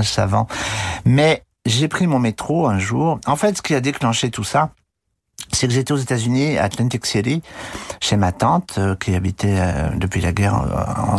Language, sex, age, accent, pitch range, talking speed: French, male, 50-69, French, 100-130 Hz, 195 wpm